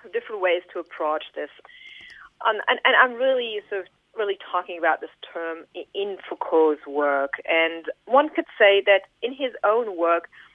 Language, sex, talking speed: English, female, 165 wpm